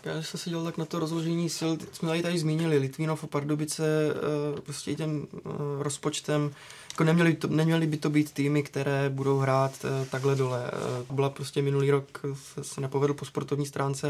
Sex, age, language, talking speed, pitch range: male, 20-39, Czech, 170 wpm, 140-150 Hz